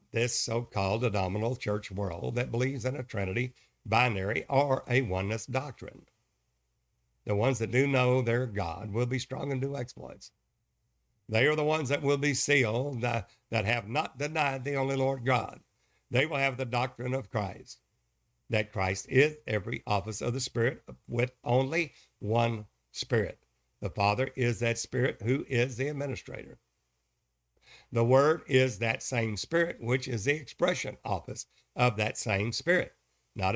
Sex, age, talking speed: male, 60-79, 155 wpm